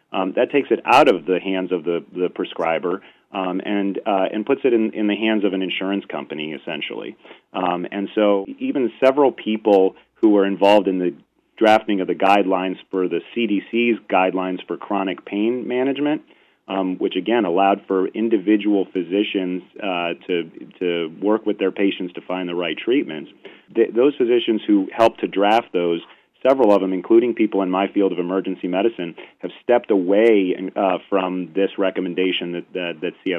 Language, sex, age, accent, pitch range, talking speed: English, male, 40-59, American, 90-110 Hz, 175 wpm